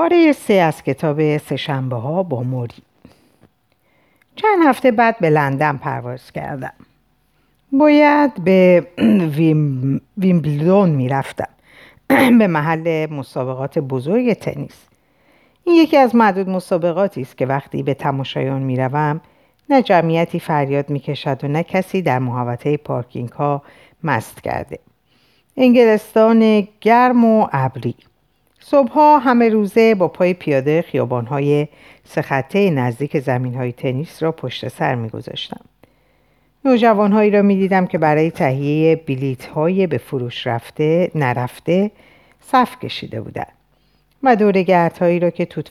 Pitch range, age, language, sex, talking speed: 135-200 Hz, 50-69, Persian, female, 120 wpm